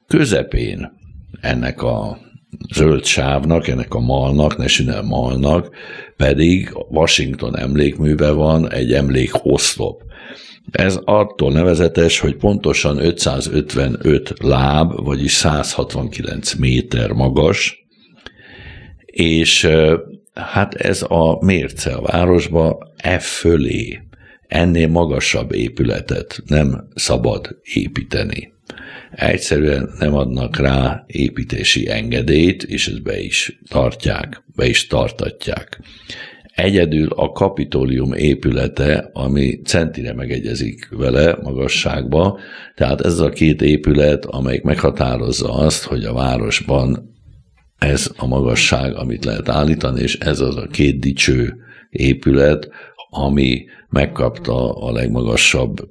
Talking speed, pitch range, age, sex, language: 100 wpm, 70-85 Hz, 60-79, male, Hungarian